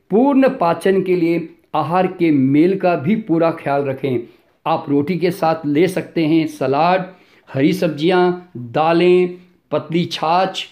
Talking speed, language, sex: 140 wpm, Hindi, male